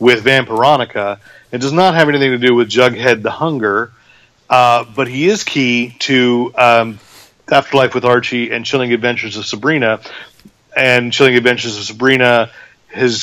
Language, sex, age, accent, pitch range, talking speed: English, male, 30-49, American, 115-150 Hz, 155 wpm